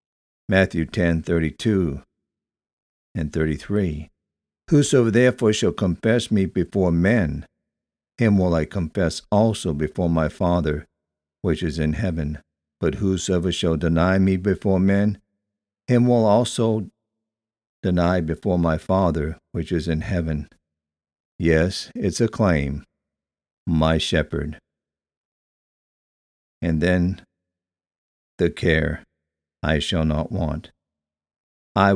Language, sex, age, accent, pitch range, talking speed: English, male, 60-79, American, 75-95 Hz, 110 wpm